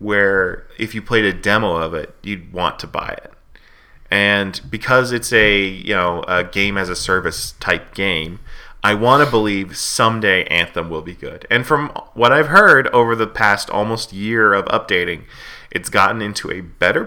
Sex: male